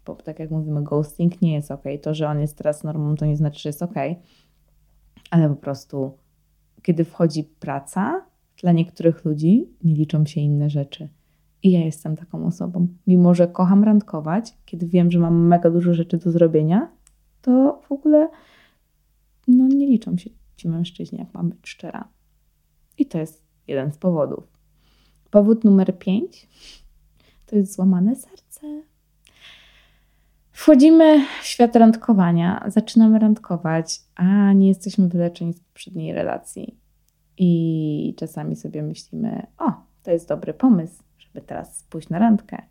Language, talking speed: Polish, 150 wpm